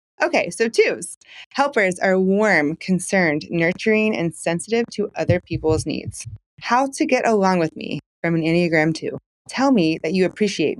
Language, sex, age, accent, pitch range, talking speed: English, female, 20-39, American, 170-220 Hz, 160 wpm